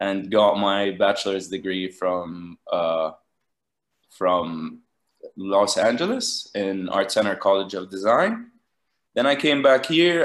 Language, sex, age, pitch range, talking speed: English, male, 20-39, 100-125 Hz, 125 wpm